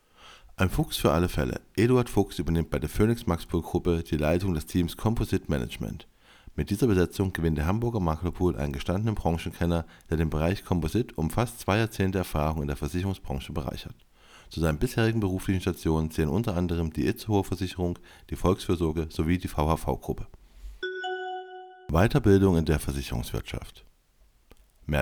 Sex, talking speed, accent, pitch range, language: male, 145 wpm, German, 80-100 Hz, German